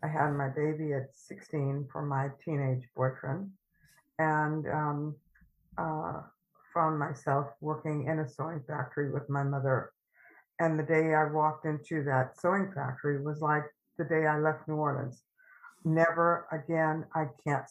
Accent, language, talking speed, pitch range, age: American, English, 150 wpm, 150-170 Hz, 60-79